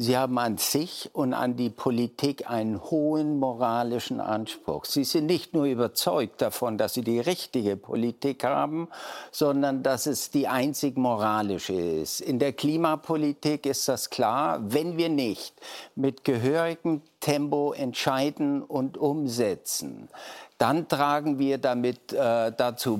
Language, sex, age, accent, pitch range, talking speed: German, male, 60-79, German, 125-150 Hz, 135 wpm